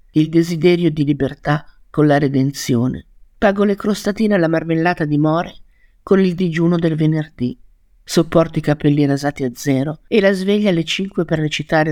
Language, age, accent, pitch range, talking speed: Italian, 50-69, native, 145-185 Hz, 160 wpm